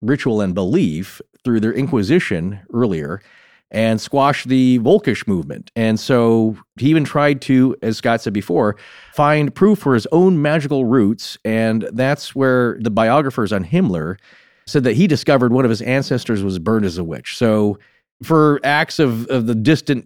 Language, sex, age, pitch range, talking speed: English, male, 40-59, 110-140 Hz, 170 wpm